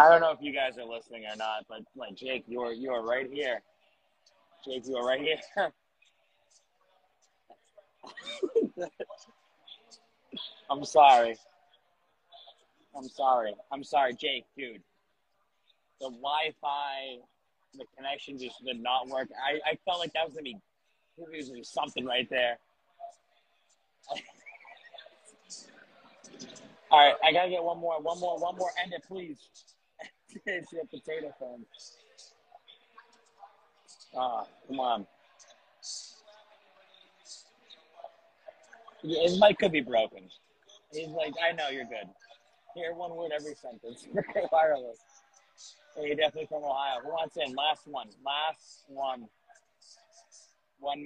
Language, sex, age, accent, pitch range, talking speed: English, male, 30-49, American, 130-185 Hz, 120 wpm